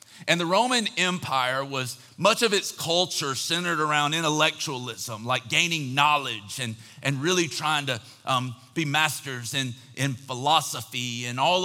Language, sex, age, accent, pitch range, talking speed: English, male, 40-59, American, 145-190 Hz, 145 wpm